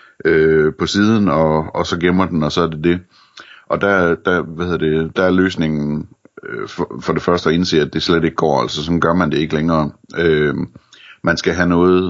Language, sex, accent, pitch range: Danish, male, native, 80-90 Hz